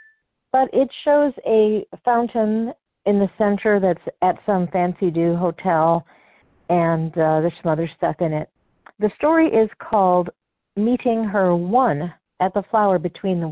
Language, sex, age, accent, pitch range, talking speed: English, female, 50-69, American, 170-210 Hz, 145 wpm